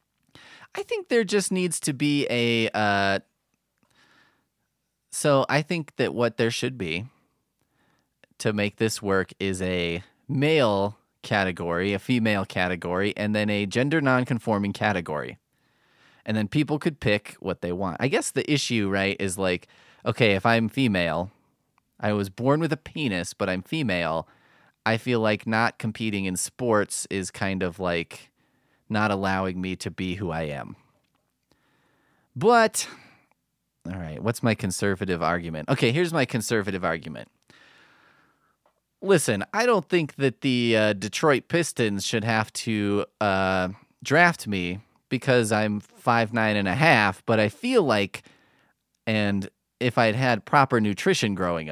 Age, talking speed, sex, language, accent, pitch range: 30-49, 145 wpm, male, English, American, 95-130 Hz